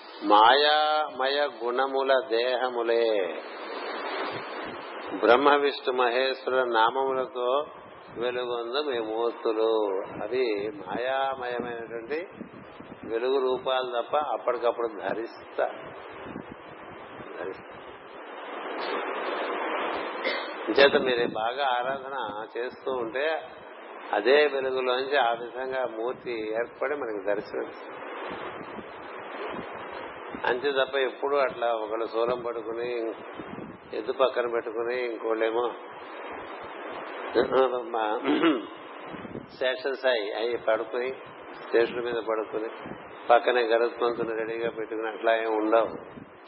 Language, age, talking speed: Telugu, 60-79, 75 wpm